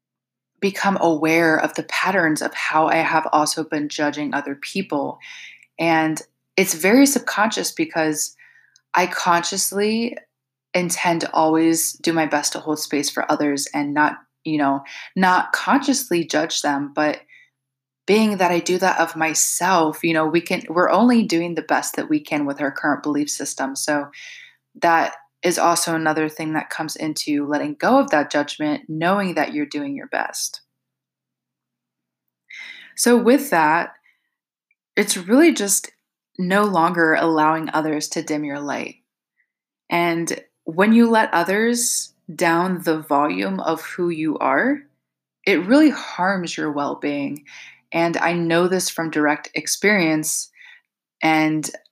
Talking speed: 145 wpm